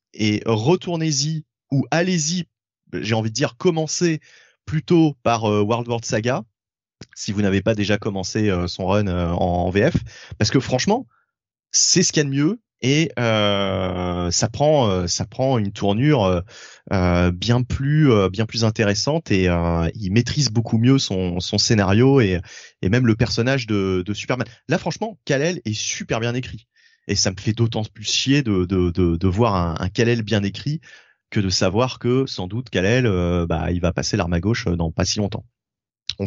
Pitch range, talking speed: 95-130 Hz, 180 wpm